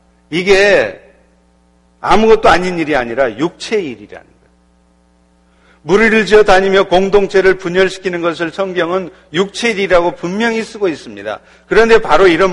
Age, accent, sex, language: 50-69, native, male, Korean